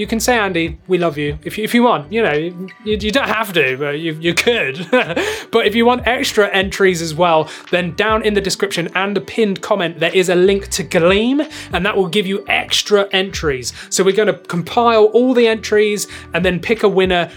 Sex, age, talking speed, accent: male, 20-39, 230 wpm, British